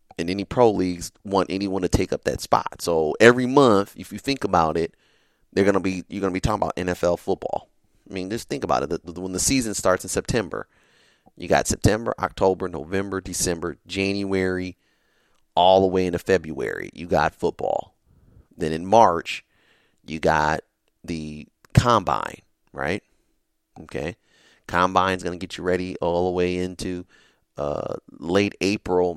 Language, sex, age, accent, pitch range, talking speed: English, male, 30-49, American, 90-105 Hz, 165 wpm